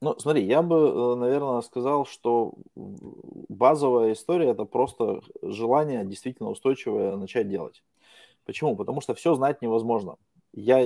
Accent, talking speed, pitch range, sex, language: native, 125 wpm, 110-140 Hz, male, Russian